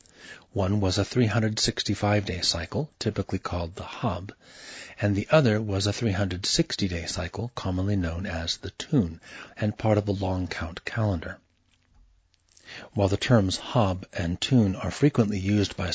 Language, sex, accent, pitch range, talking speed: English, male, American, 90-115 Hz, 145 wpm